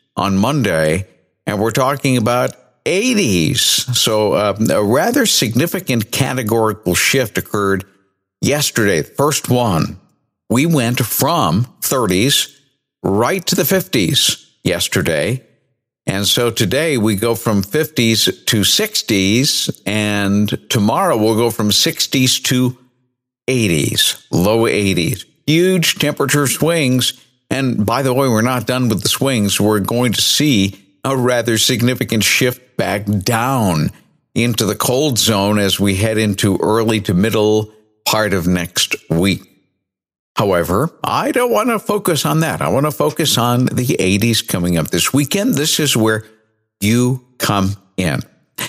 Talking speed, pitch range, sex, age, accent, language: 135 wpm, 105-135 Hz, male, 50-69, American, English